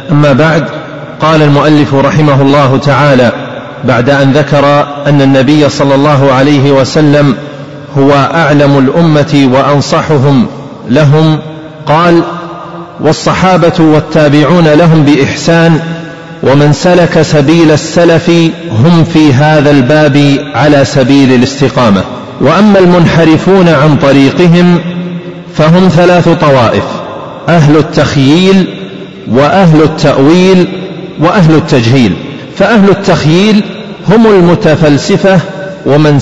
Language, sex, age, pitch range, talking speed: Arabic, male, 40-59, 145-180 Hz, 90 wpm